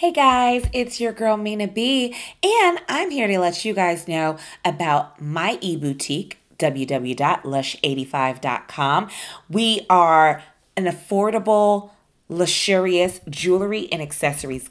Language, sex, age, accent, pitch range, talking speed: English, female, 20-39, American, 170-225 Hz, 115 wpm